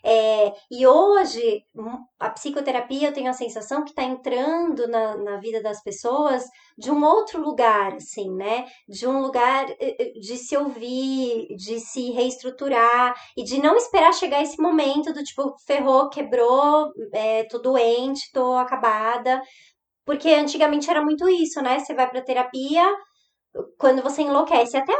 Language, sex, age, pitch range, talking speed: Portuguese, male, 20-39, 240-300 Hz, 145 wpm